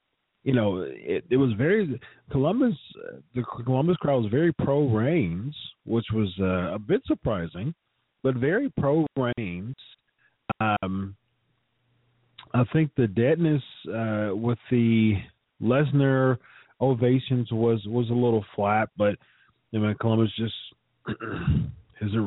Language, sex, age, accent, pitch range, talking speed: English, male, 40-59, American, 100-130 Hz, 110 wpm